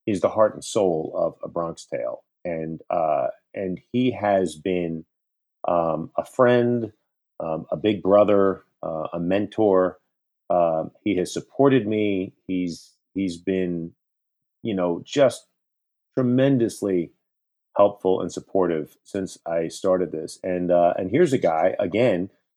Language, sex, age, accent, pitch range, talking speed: English, male, 40-59, American, 90-115 Hz, 135 wpm